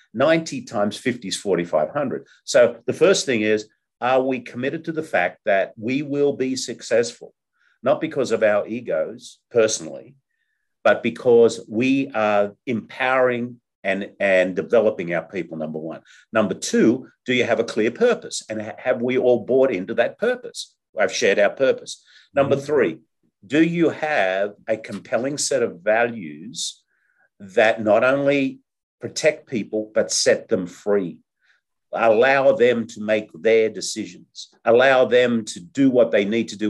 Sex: male